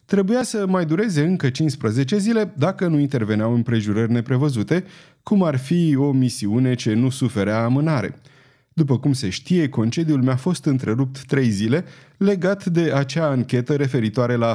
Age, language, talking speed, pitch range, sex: 30-49, Romanian, 155 wpm, 120-165 Hz, male